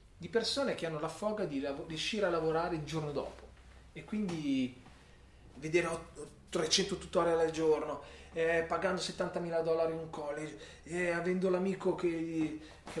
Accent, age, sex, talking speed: native, 20-39, male, 150 wpm